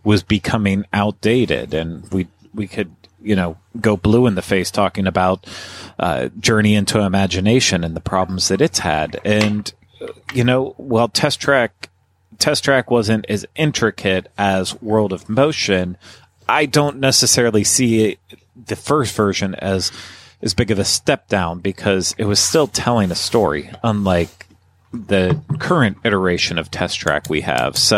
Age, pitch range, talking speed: 30-49, 95-115 Hz, 155 wpm